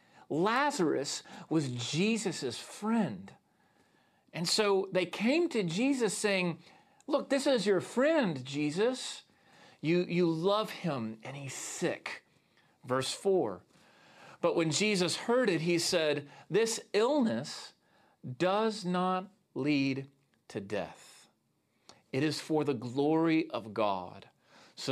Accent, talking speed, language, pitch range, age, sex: American, 115 wpm, English, 130-190 Hz, 40-59, male